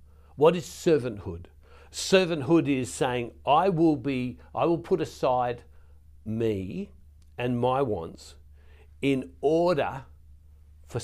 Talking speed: 110 wpm